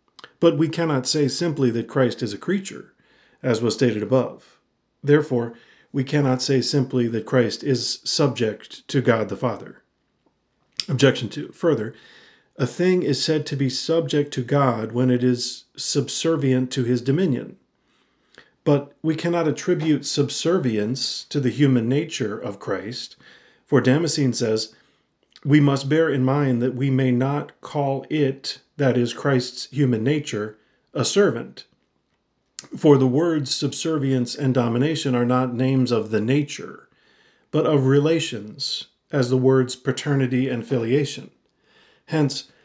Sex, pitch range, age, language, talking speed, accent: male, 125-150 Hz, 50-69, English, 140 wpm, American